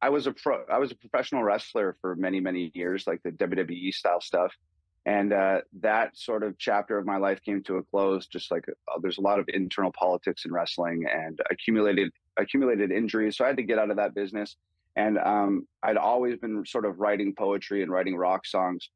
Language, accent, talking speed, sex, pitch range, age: English, American, 215 wpm, male, 90-105 Hz, 30-49